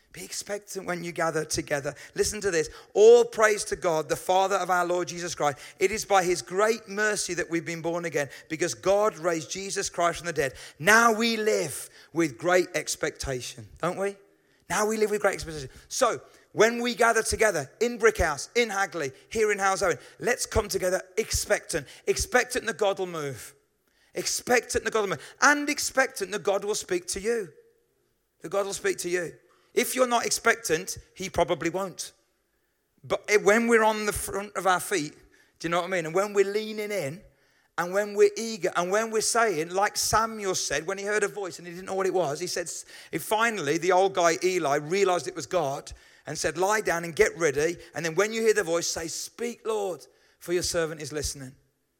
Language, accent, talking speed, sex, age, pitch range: English, British, 205 wpm, male, 40-59, 170-215 Hz